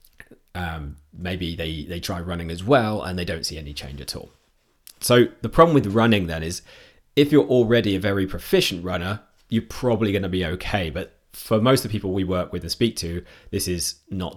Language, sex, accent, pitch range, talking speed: English, male, British, 80-100 Hz, 215 wpm